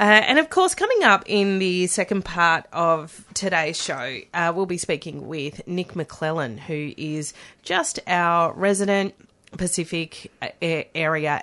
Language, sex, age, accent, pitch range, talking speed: English, female, 30-49, Australian, 155-180 Hz, 140 wpm